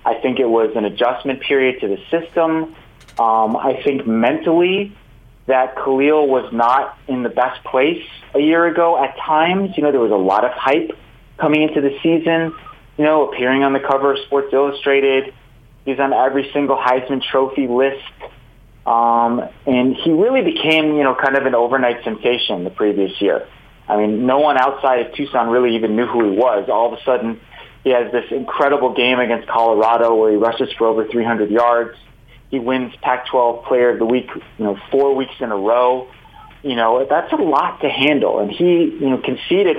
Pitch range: 120-145 Hz